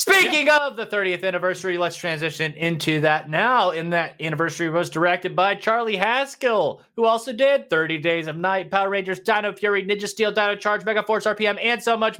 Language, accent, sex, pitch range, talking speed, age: English, American, male, 165-230 Hz, 190 wpm, 30-49